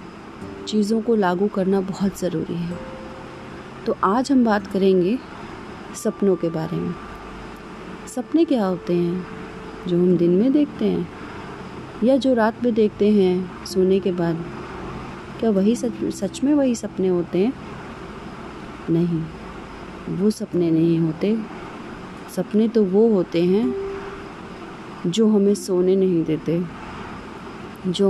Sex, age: female, 30-49